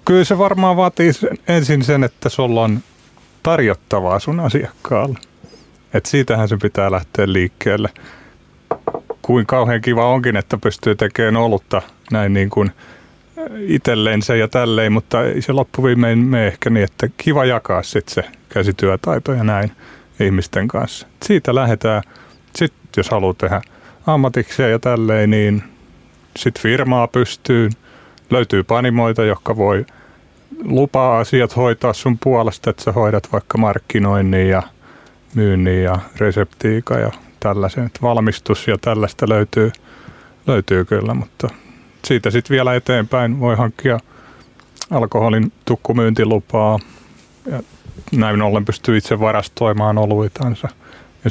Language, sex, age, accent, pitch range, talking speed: Finnish, male, 30-49, native, 105-125 Hz, 120 wpm